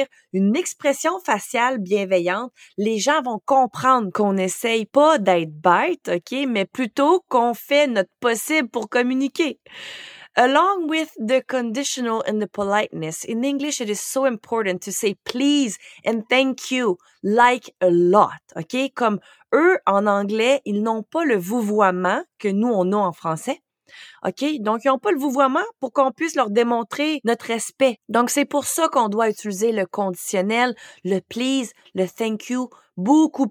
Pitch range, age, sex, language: 205-275 Hz, 30-49, female, French